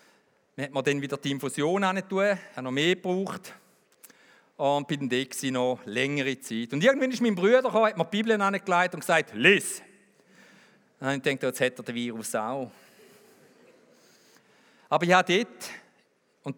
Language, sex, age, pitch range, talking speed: English, male, 50-69, 140-205 Hz, 180 wpm